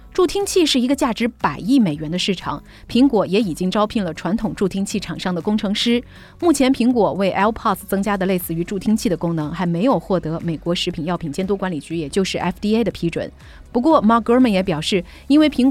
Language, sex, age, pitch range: Chinese, female, 30-49, 170-240 Hz